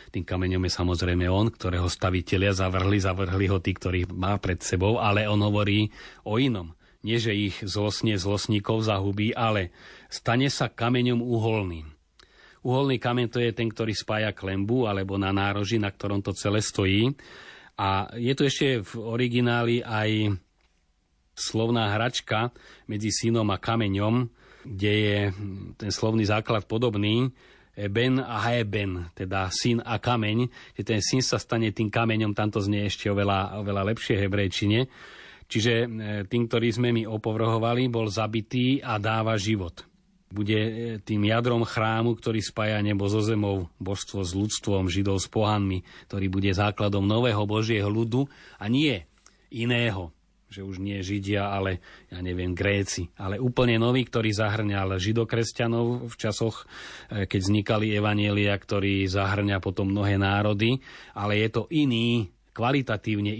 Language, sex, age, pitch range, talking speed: Slovak, male, 30-49, 100-115 Hz, 140 wpm